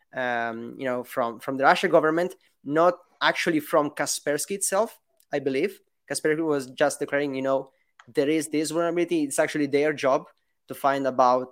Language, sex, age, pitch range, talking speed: English, male, 20-39, 130-165 Hz, 165 wpm